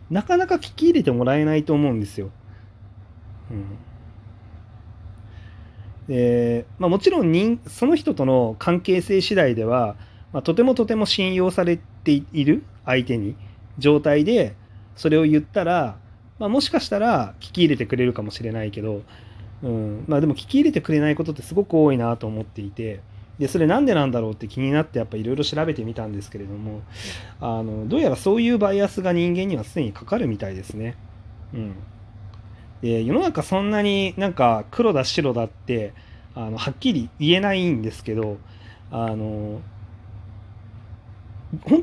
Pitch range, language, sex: 105-155 Hz, Japanese, male